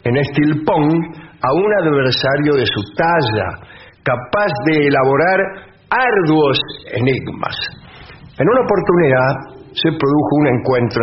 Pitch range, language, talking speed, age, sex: 130-175 Hz, English, 110 wpm, 50-69, male